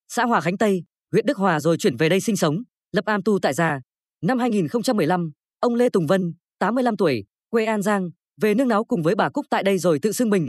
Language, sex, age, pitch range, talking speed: Vietnamese, female, 20-39, 180-240 Hz, 240 wpm